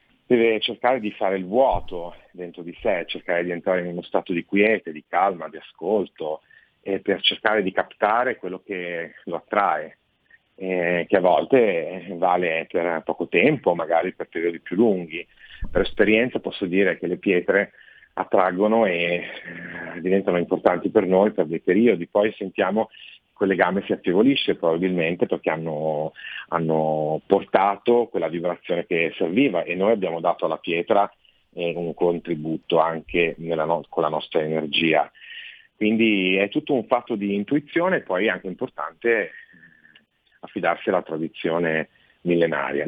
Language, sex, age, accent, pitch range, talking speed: Italian, male, 40-59, native, 85-100 Hz, 145 wpm